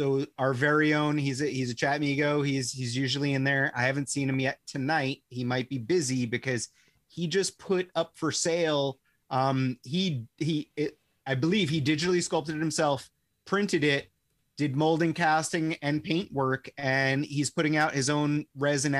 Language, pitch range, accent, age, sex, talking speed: English, 135-160 Hz, American, 30-49, male, 185 wpm